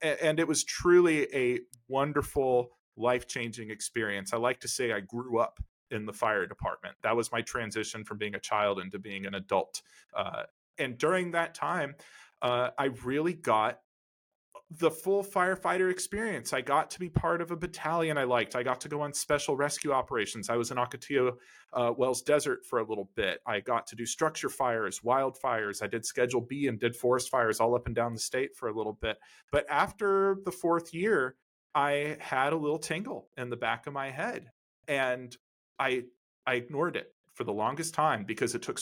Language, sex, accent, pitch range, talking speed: English, male, American, 115-160 Hz, 195 wpm